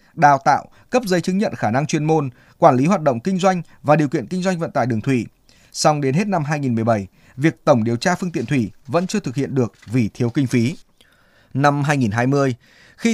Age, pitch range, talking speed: 20-39, 130-185 Hz, 225 wpm